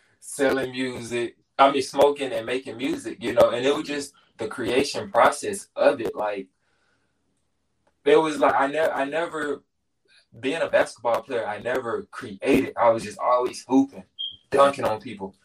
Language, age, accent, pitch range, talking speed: English, 20-39, American, 110-145 Hz, 165 wpm